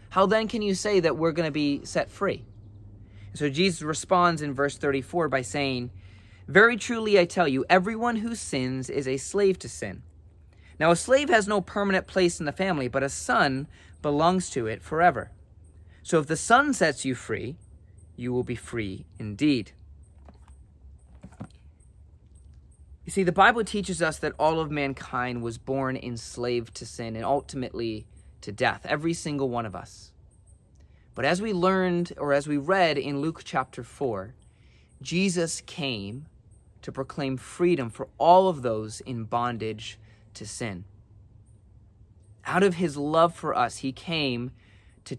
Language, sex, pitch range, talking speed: English, male, 105-165 Hz, 160 wpm